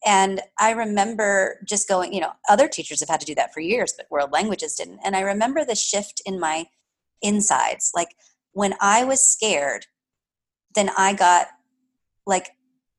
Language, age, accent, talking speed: English, 30-49, American, 170 wpm